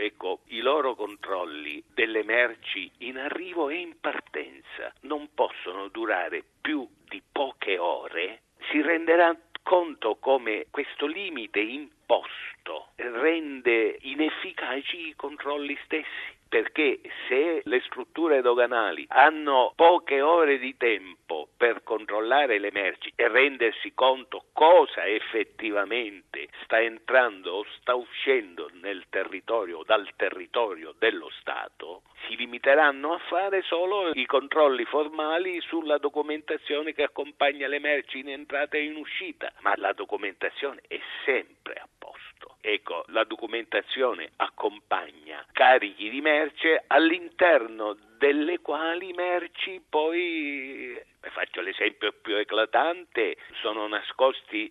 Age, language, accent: 50-69, Italian, native